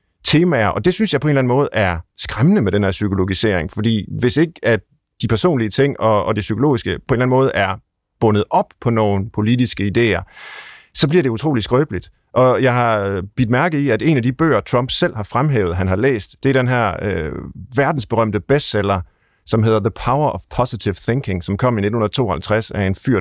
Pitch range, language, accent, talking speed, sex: 105-130 Hz, Danish, native, 205 wpm, male